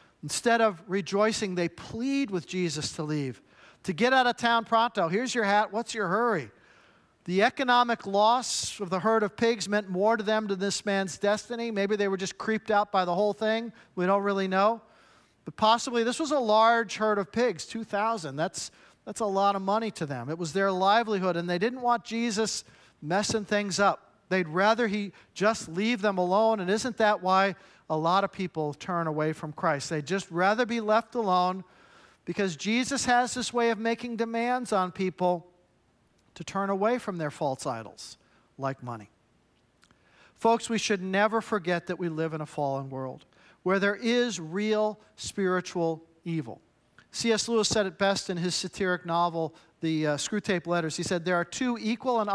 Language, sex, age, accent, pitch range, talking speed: English, male, 50-69, American, 175-225 Hz, 185 wpm